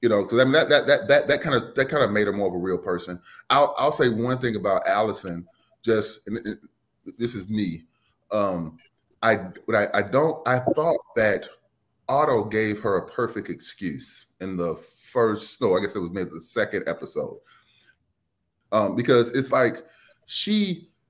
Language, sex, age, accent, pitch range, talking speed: English, male, 30-49, American, 95-115 Hz, 190 wpm